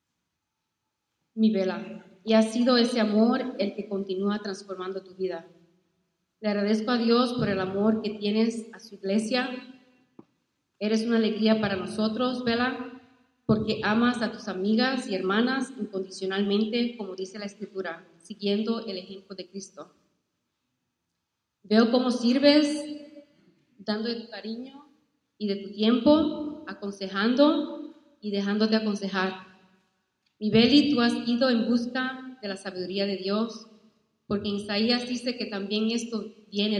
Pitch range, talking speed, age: 195-245 Hz, 135 wpm, 30-49